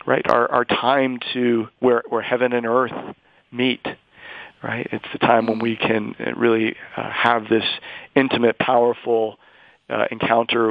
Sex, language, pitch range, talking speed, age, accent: male, English, 110-120 Hz, 140 wpm, 40-59, American